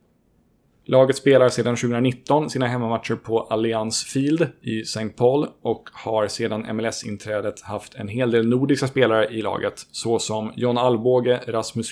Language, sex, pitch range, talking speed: Swedish, male, 110-130 Hz, 140 wpm